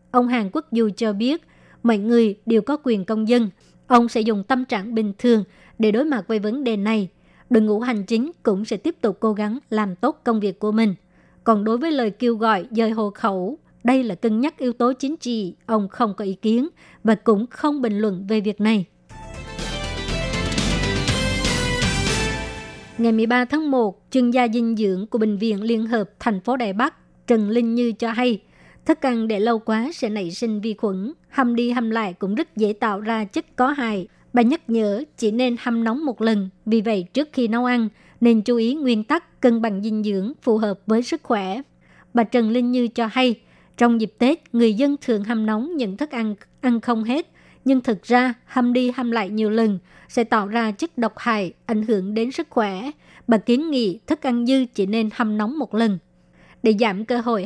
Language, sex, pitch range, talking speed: Vietnamese, male, 215-250 Hz, 210 wpm